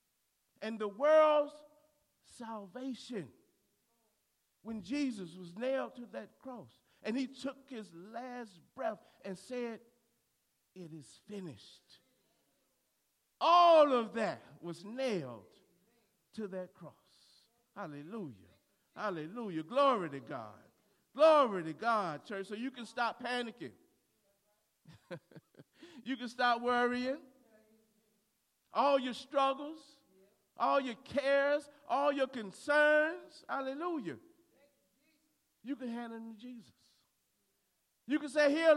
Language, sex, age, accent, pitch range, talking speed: English, male, 50-69, American, 220-305 Hz, 105 wpm